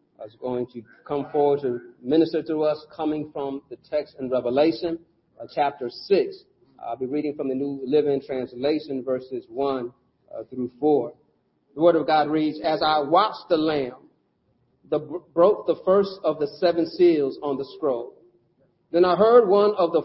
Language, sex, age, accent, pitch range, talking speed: English, male, 40-59, American, 150-215 Hz, 175 wpm